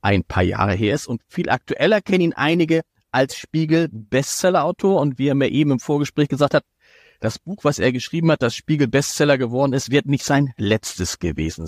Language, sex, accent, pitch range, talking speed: German, male, German, 120-160 Hz, 190 wpm